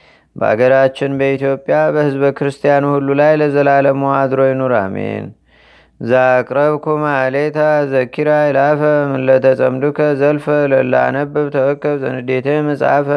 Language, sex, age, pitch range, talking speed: Amharic, male, 30-49, 130-145 Hz, 95 wpm